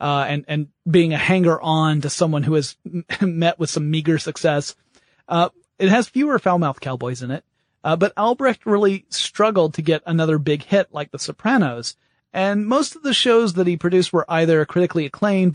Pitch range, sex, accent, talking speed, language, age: 145-185 Hz, male, American, 195 wpm, English, 30-49